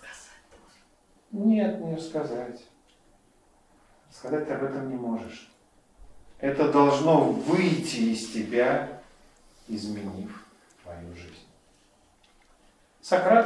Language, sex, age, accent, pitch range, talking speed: Russian, male, 40-59, native, 110-155 Hz, 80 wpm